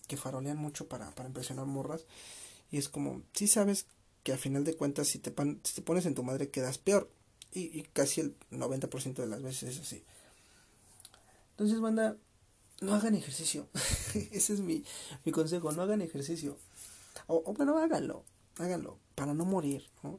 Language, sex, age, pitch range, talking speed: Spanish, male, 40-59, 130-190 Hz, 180 wpm